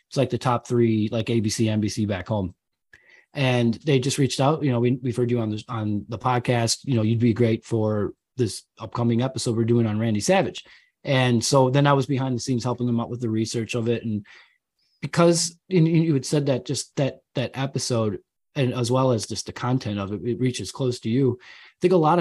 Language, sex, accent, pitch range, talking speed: English, male, American, 115-140 Hz, 230 wpm